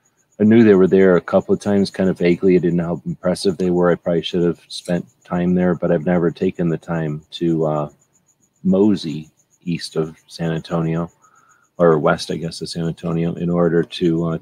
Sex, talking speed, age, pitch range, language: male, 210 wpm, 40-59, 85-95 Hz, English